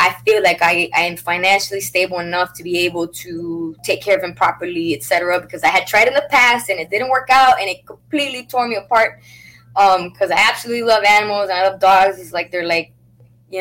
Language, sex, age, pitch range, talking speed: English, female, 20-39, 170-245 Hz, 235 wpm